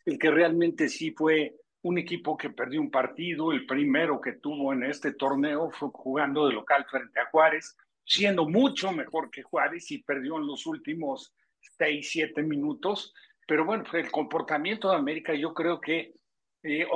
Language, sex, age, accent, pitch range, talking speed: Spanish, male, 50-69, Mexican, 150-200 Hz, 170 wpm